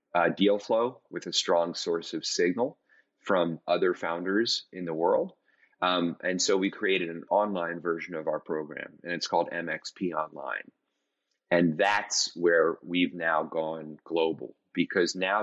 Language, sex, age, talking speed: English, male, 30-49, 155 wpm